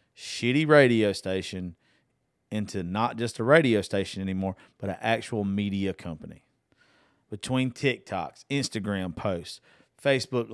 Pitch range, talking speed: 110-145 Hz, 115 wpm